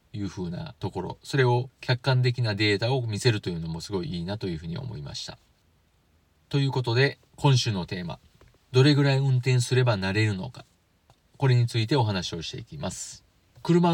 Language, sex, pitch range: Japanese, male, 100-140 Hz